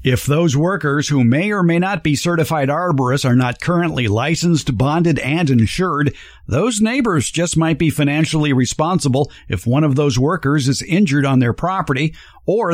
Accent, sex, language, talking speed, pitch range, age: American, male, English, 170 wpm, 135-175 Hz, 50-69